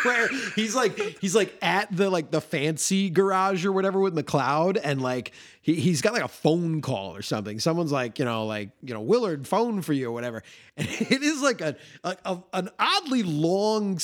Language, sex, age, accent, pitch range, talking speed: English, male, 30-49, American, 115-175 Hz, 215 wpm